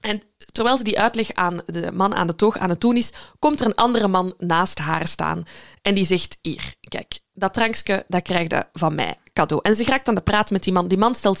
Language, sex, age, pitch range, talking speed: Dutch, female, 20-39, 175-230 Hz, 255 wpm